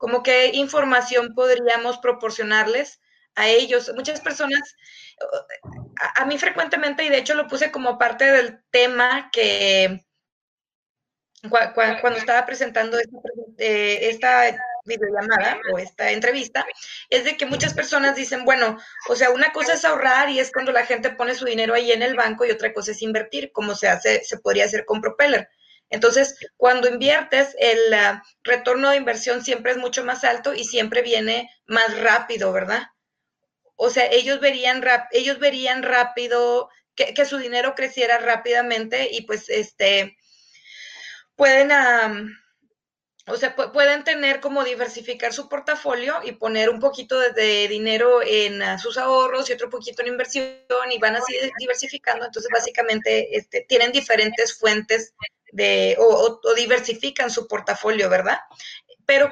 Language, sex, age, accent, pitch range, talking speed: English, female, 20-39, Mexican, 235-280 Hz, 145 wpm